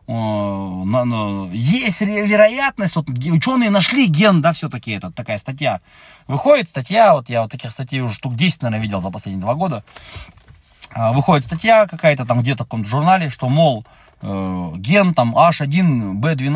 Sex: male